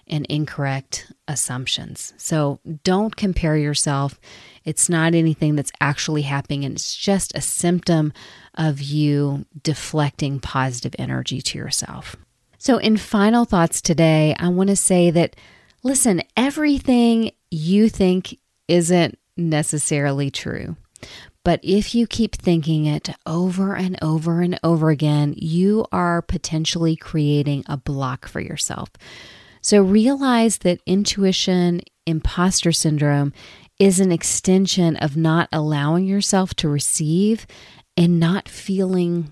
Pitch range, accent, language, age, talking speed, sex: 150-190 Hz, American, English, 40-59, 120 wpm, female